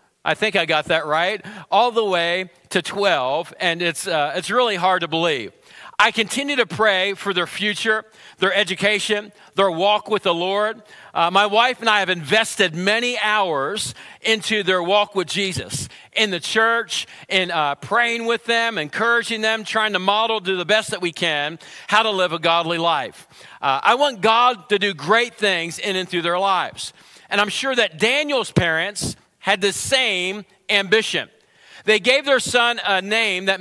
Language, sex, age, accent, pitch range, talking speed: English, male, 40-59, American, 185-225 Hz, 180 wpm